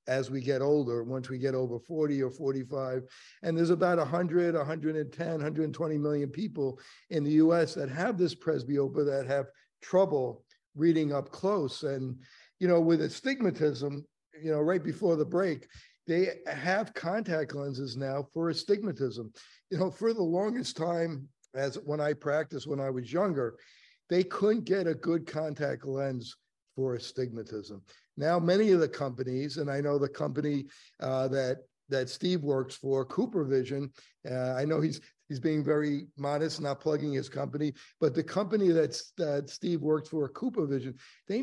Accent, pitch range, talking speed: American, 135-175 Hz, 165 wpm